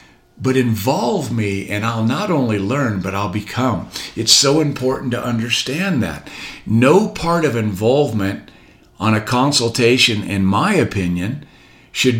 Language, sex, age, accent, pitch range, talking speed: English, male, 50-69, American, 110-150 Hz, 140 wpm